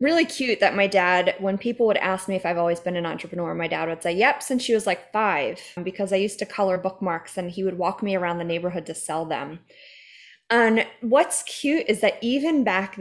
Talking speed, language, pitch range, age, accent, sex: 230 wpm, English, 180-240 Hz, 20-39, American, female